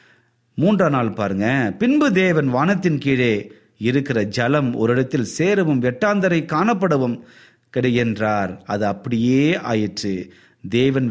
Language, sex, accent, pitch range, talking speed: Tamil, male, native, 115-175 Hz, 95 wpm